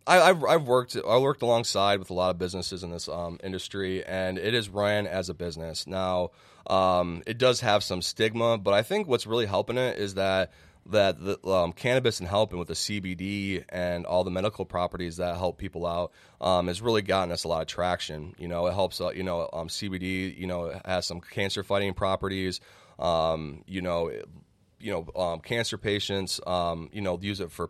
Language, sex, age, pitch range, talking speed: English, male, 20-39, 90-100 Hz, 210 wpm